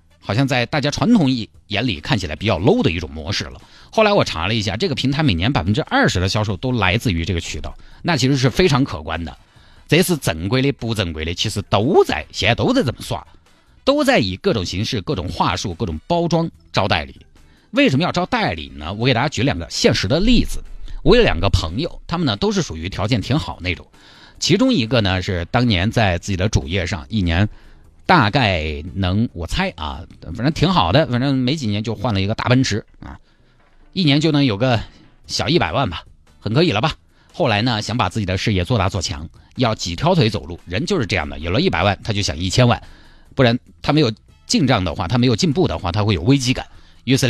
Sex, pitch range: male, 90-135 Hz